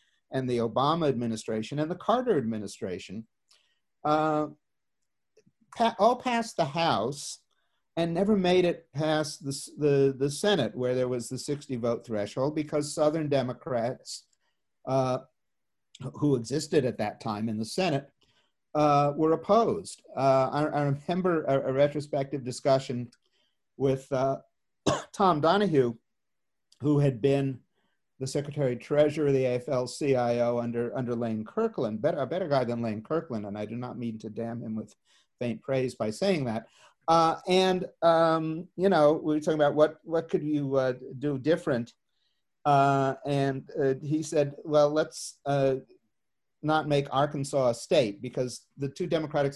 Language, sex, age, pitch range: English, male, 50-69, 125-155 Hz